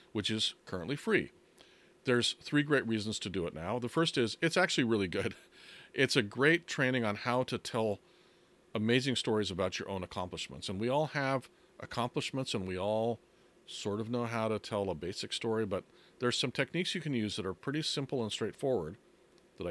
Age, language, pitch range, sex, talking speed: 40-59, English, 110-150 Hz, male, 195 wpm